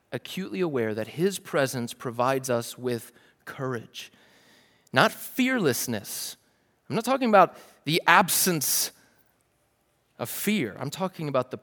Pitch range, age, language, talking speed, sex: 125-185 Hz, 30-49, English, 120 wpm, male